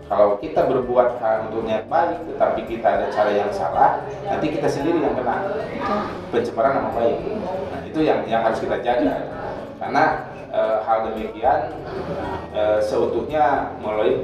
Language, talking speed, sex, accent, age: Indonesian, 145 wpm, male, native, 20-39